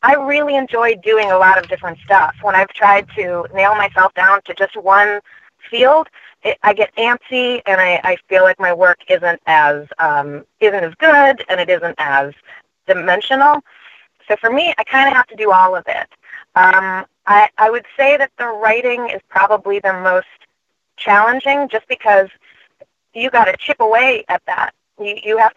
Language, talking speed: English, 185 wpm